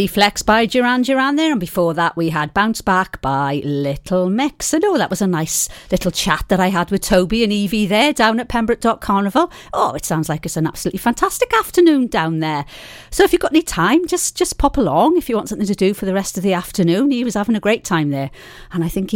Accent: British